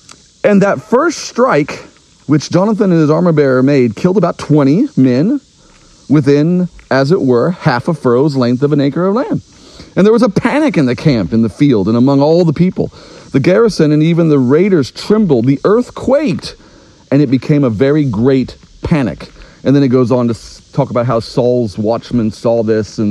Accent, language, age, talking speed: American, English, 40-59, 190 wpm